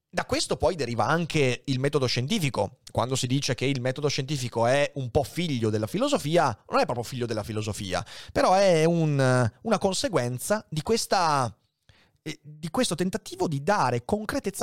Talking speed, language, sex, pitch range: 170 wpm, Italian, male, 110-160 Hz